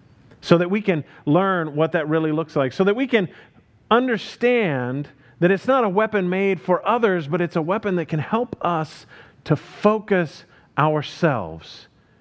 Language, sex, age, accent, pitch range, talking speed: English, male, 40-59, American, 120-180 Hz, 165 wpm